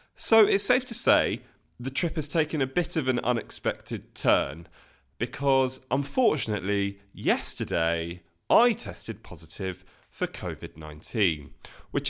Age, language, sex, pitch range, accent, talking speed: 20-39, English, male, 100-135 Hz, British, 120 wpm